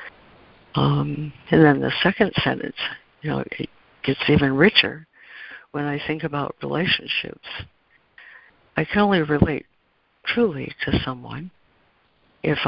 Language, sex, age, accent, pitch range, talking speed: English, female, 60-79, American, 135-160 Hz, 120 wpm